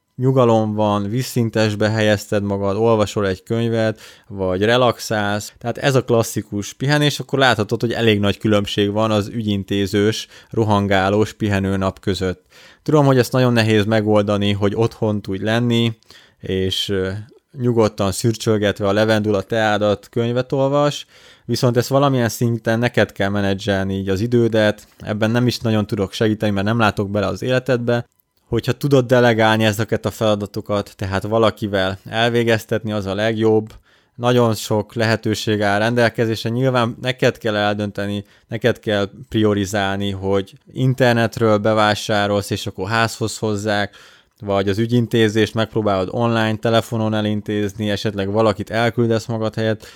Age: 20-39